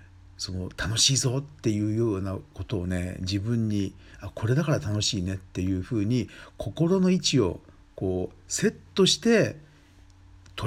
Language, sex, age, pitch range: Japanese, male, 50-69, 95-125 Hz